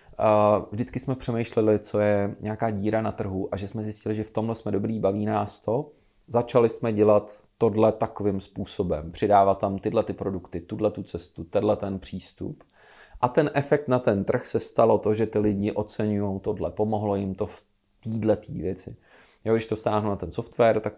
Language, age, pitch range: Czech, 30-49, 95-110 Hz